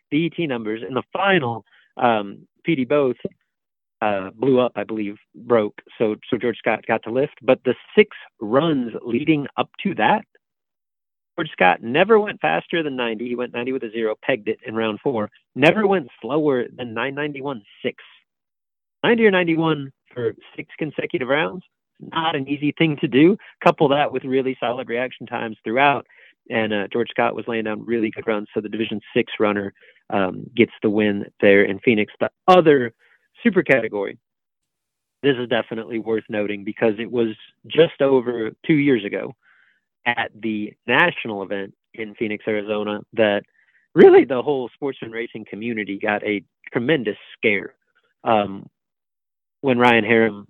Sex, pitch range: male, 105-140 Hz